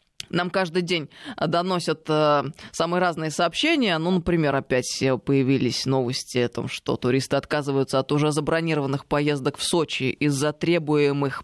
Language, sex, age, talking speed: Russian, female, 20-39, 130 wpm